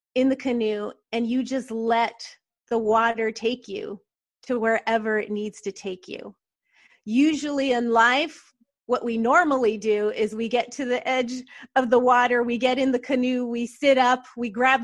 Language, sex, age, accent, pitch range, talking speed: English, female, 30-49, American, 220-255 Hz, 180 wpm